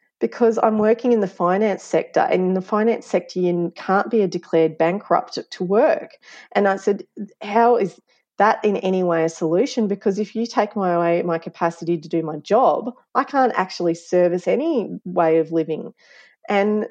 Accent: Australian